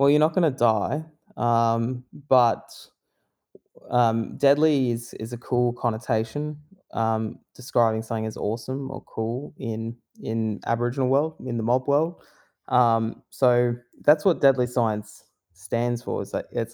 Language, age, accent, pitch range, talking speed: English, 20-39, Australian, 110-130 Hz, 145 wpm